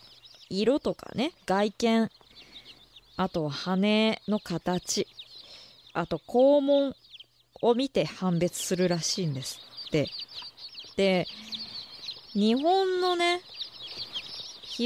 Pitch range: 170-230 Hz